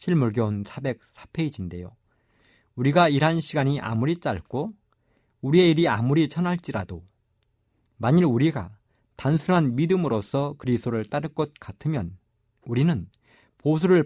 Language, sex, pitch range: Korean, male, 110-155 Hz